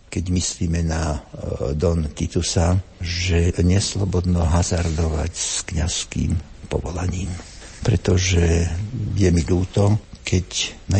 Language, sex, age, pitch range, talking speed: Slovak, male, 60-79, 85-95 Hz, 95 wpm